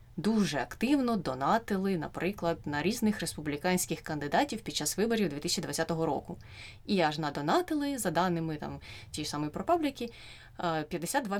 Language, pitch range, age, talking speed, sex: Ukrainian, 160-200 Hz, 20-39, 130 wpm, female